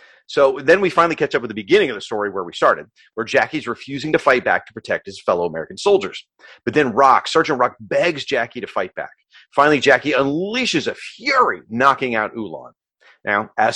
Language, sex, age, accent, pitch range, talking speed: English, male, 30-49, American, 115-165 Hz, 205 wpm